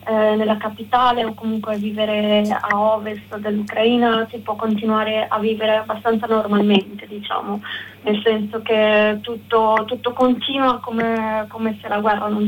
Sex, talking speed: female, 140 wpm